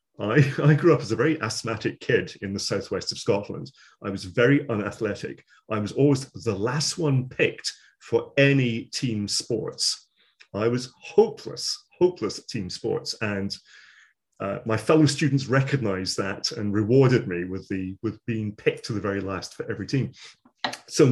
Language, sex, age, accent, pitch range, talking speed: English, male, 40-59, British, 100-145 Hz, 170 wpm